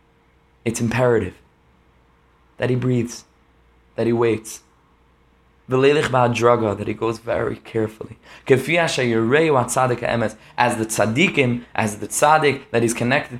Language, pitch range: English, 110-145 Hz